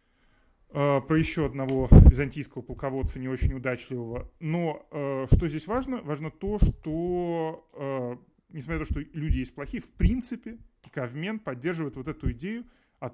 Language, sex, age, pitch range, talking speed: Russian, male, 20-39, 130-175 Hz, 145 wpm